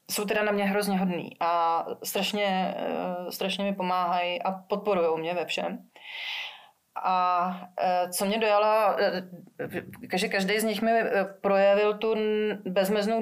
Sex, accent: female, native